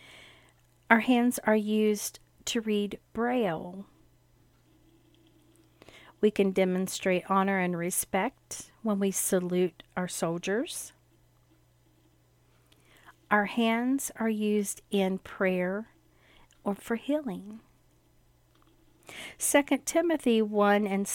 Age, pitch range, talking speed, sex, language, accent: 50-69, 190-230 Hz, 90 wpm, female, English, American